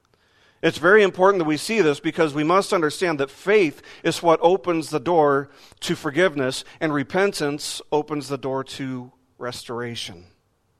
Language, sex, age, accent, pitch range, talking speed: English, male, 40-59, American, 125-165 Hz, 150 wpm